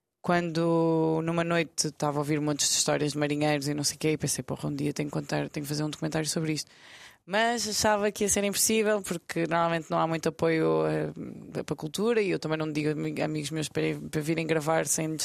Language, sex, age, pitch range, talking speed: Portuguese, female, 20-39, 150-180 Hz, 230 wpm